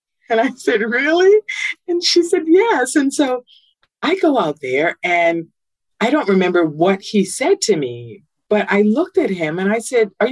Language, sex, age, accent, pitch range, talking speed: English, female, 50-69, American, 170-260 Hz, 185 wpm